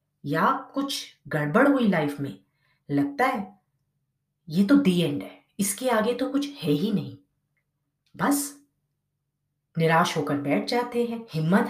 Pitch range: 145-240 Hz